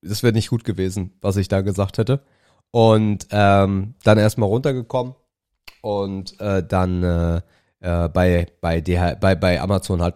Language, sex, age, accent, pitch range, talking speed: German, male, 30-49, German, 95-120 Hz, 160 wpm